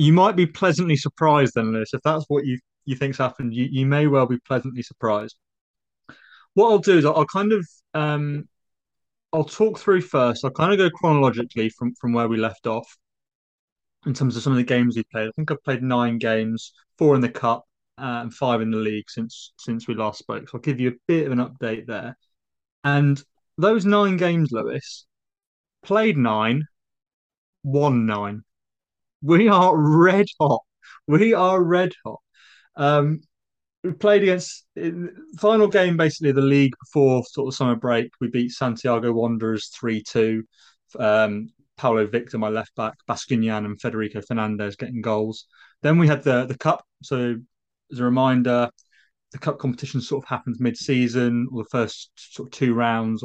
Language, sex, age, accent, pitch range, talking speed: English, male, 20-39, British, 115-155 Hz, 180 wpm